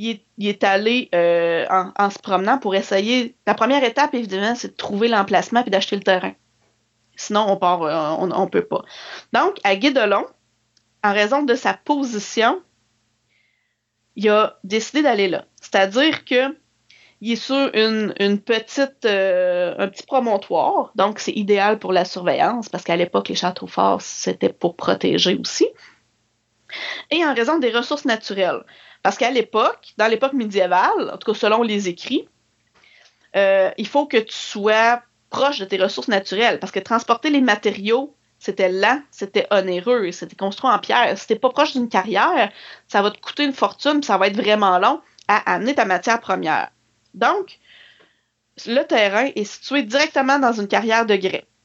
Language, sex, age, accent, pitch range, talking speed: French, female, 30-49, Canadian, 195-255 Hz, 165 wpm